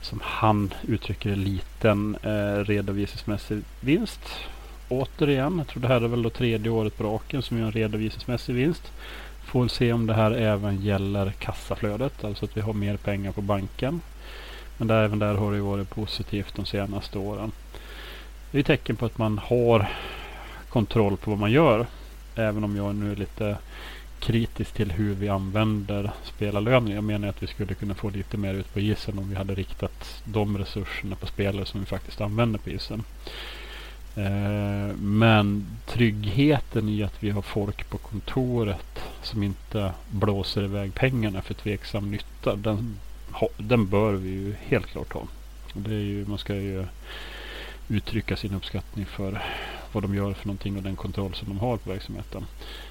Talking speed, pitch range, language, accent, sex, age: 170 wpm, 100-110 Hz, English, Norwegian, male, 30-49